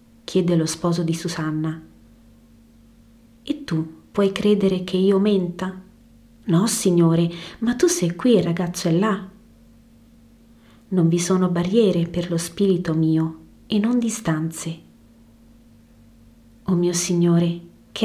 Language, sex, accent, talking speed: Italian, female, native, 125 wpm